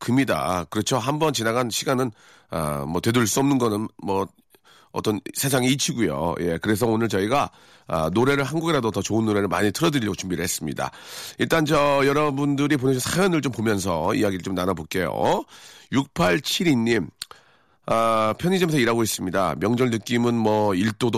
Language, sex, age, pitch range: Korean, male, 40-59, 100-140 Hz